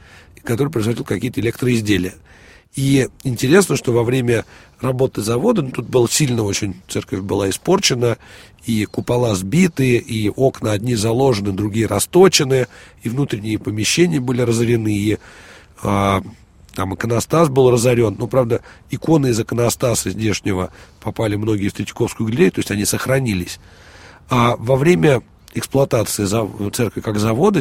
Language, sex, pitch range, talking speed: Russian, male, 105-130 Hz, 135 wpm